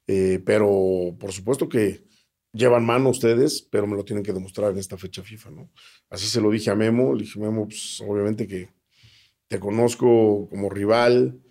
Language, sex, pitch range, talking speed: Spanish, male, 100-115 Hz, 180 wpm